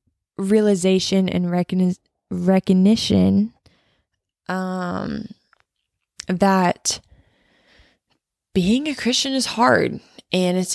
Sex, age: female, 20-39